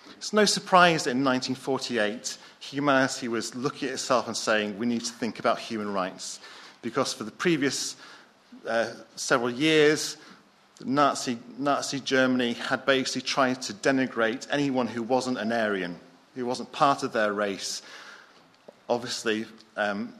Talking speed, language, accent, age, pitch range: 145 wpm, English, British, 40-59, 125-170 Hz